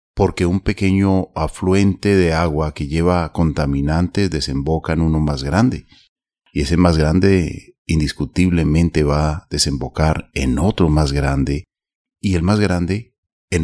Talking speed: 135 wpm